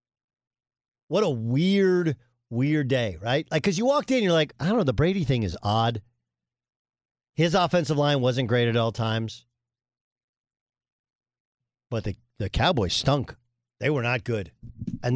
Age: 50-69